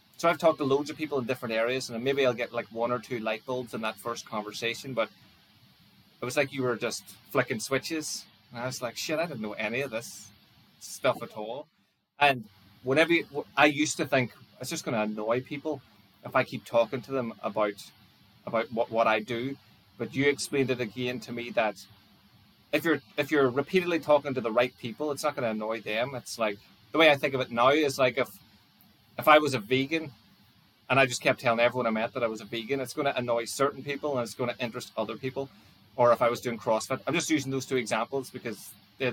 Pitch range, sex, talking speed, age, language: 110-140 Hz, male, 235 wpm, 20-39, English